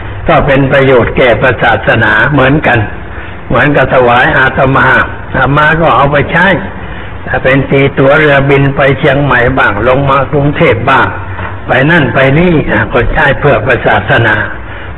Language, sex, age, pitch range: Thai, male, 60-79, 105-150 Hz